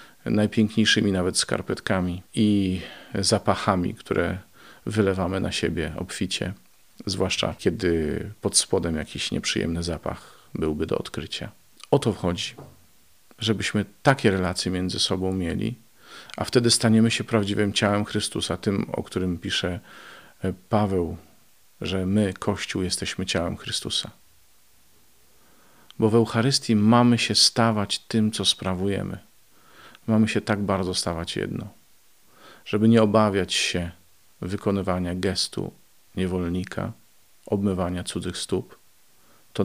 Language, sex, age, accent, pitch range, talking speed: Polish, male, 40-59, native, 90-105 Hz, 110 wpm